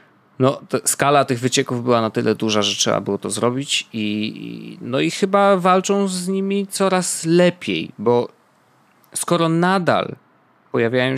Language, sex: Polish, male